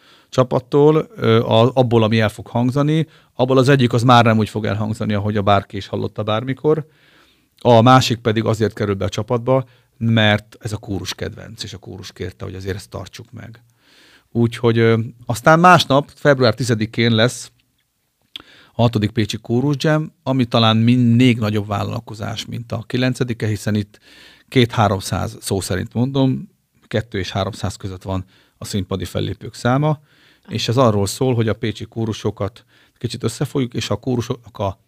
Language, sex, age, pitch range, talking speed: Hungarian, male, 40-59, 105-125 Hz, 155 wpm